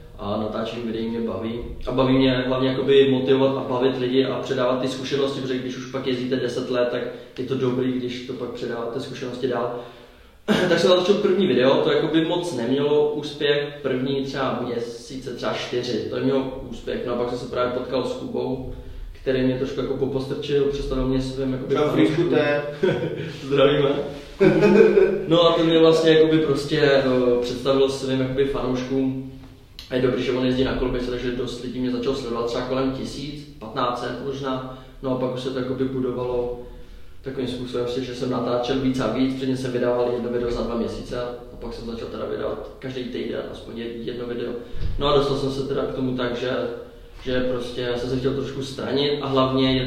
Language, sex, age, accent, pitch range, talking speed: Czech, male, 20-39, native, 125-135 Hz, 185 wpm